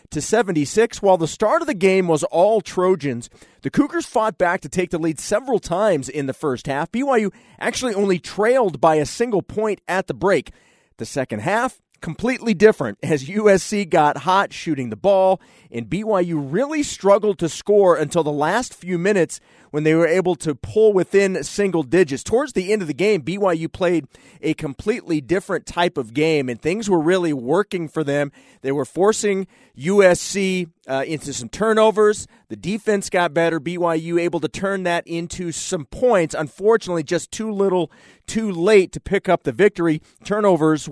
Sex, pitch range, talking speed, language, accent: male, 155-200 Hz, 175 wpm, English, American